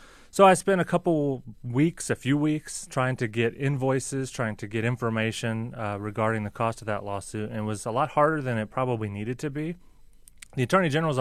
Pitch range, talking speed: 105-120 Hz, 210 wpm